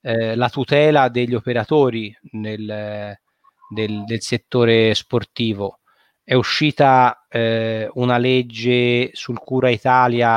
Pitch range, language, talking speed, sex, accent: 110-125 Hz, Italian, 100 wpm, male, native